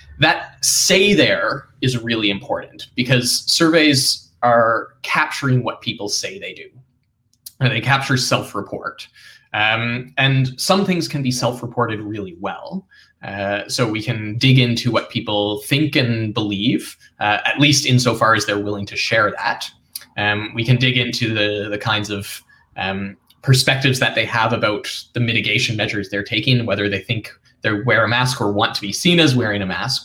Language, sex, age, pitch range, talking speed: English, male, 20-39, 105-130 Hz, 170 wpm